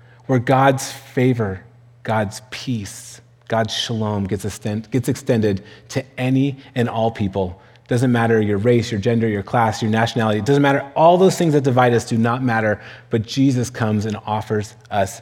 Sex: male